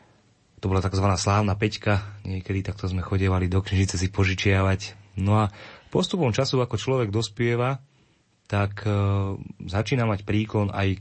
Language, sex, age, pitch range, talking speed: Slovak, male, 30-49, 95-105 Hz, 135 wpm